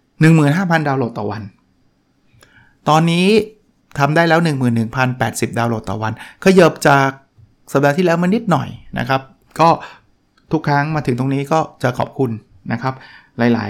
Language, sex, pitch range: Thai, male, 125-155 Hz